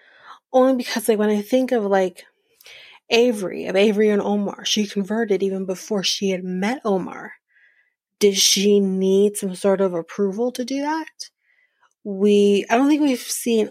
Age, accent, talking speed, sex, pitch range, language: 30-49, American, 160 wpm, female, 190-225 Hz, English